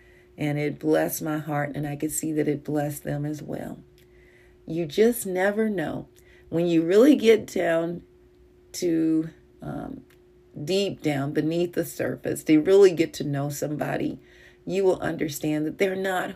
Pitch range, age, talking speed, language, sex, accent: 145-170 Hz, 40-59, 160 wpm, English, female, American